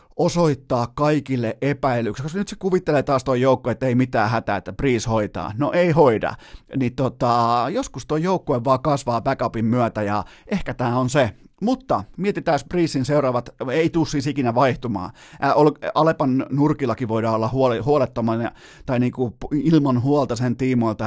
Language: Finnish